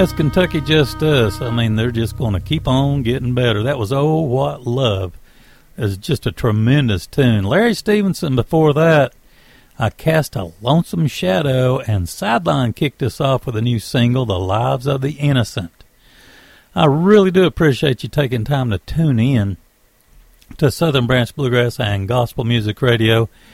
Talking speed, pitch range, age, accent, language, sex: 165 wpm, 105-145 Hz, 60-79, American, English, male